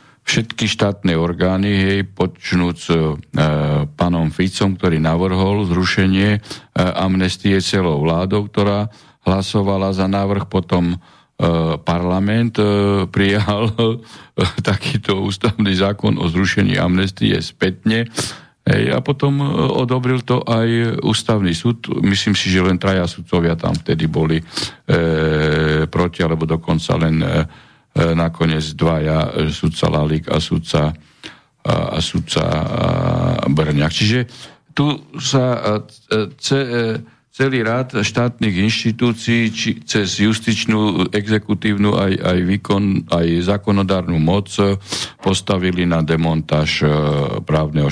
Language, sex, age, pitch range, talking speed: Slovak, male, 50-69, 85-115 Hz, 110 wpm